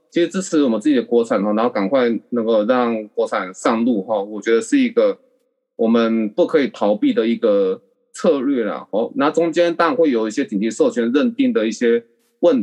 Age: 20-39